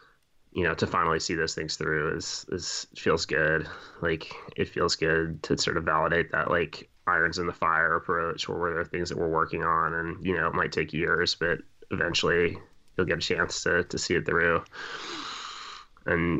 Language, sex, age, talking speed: English, male, 20-39, 200 wpm